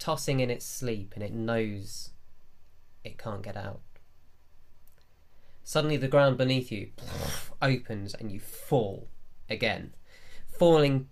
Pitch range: 95-125 Hz